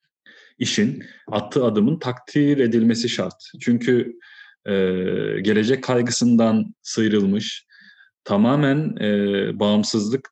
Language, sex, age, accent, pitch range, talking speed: Turkish, male, 30-49, native, 105-135 Hz, 80 wpm